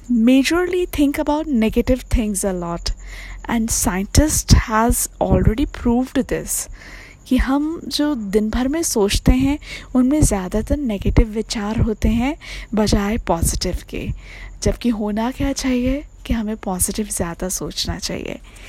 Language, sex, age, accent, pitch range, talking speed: Hindi, female, 20-39, native, 215-280 Hz, 130 wpm